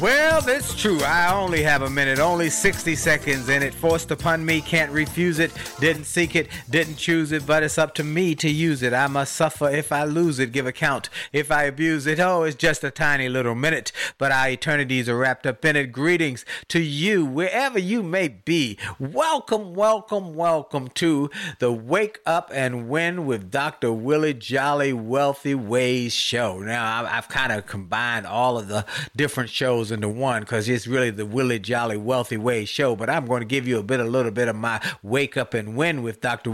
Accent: American